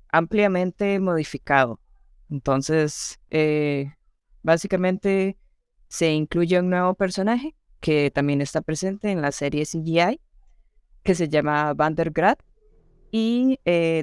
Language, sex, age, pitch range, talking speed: Spanish, female, 20-39, 160-195 Hz, 105 wpm